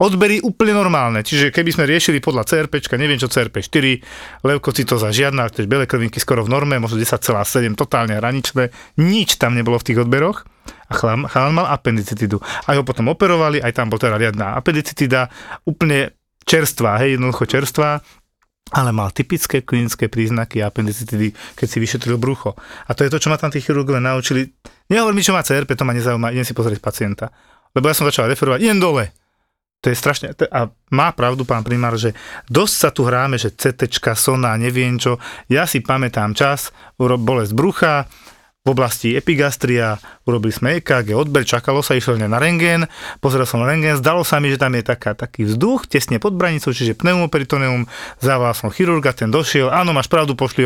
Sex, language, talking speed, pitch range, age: male, Slovak, 180 wpm, 115-145 Hz, 30-49